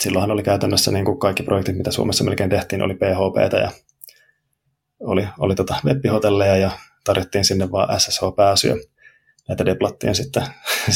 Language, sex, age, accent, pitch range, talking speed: Finnish, male, 20-39, native, 95-130 Hz, 135 wpm